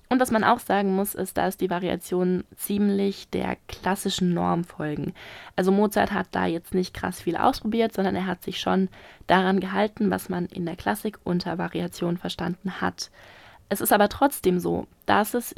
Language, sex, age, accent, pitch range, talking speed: German, female, 20-39, German, 180-225 Hz, 180 wpm